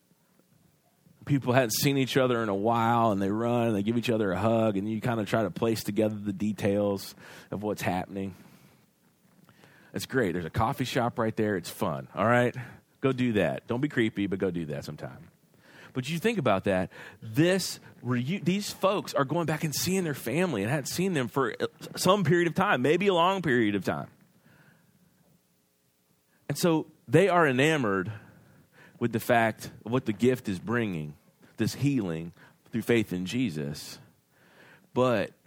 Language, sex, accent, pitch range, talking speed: English, male, American, 95-140 Hz, 180 wpm